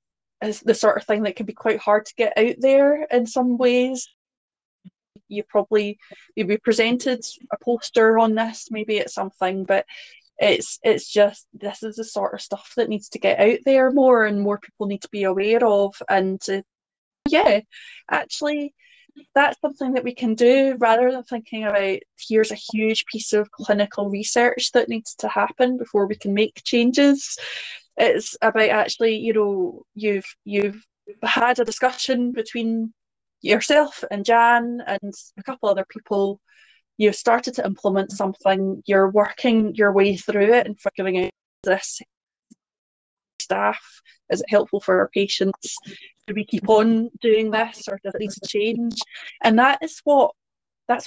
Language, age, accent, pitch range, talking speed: English, 20-39, British, 205-245 Hz, 165 wpm